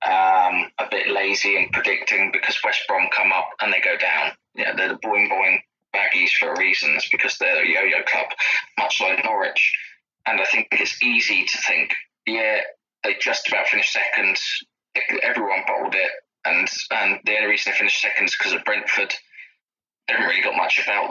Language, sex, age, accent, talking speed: English, male, 20-39, British, 185 wpm